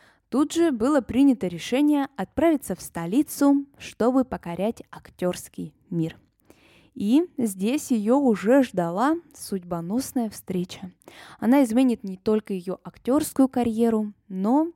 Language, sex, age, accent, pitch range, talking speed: Russian, female, 10-29, native, 180-260 Hz, 110 wpm